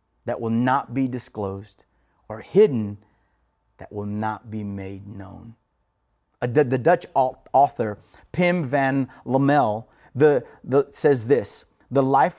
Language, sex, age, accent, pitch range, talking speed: English, male, 30-49, American, 105-150 Hz, 110 wpm